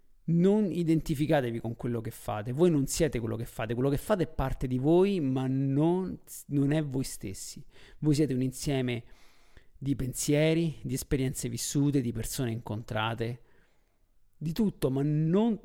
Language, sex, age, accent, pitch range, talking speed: Italian, male, 50-69, native, 120-160 Hz, 155 wpm